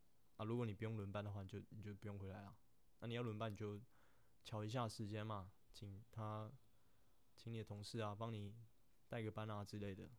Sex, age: male, 20-39